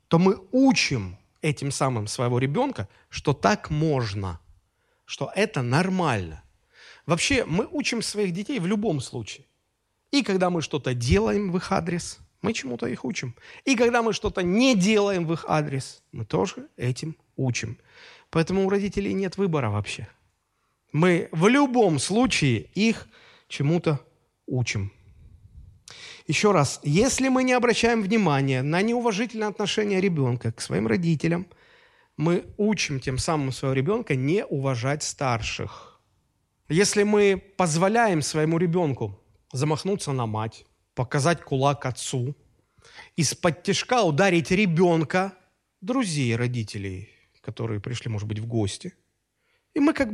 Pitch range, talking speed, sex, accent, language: 130-205 Hz, 130 wpm, male, native, Russian